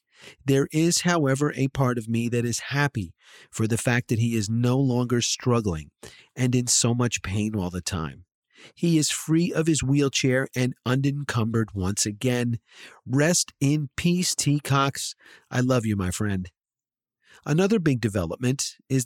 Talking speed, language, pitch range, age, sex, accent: 160 wpm, English, 115-145 Hz, 40-59, male, American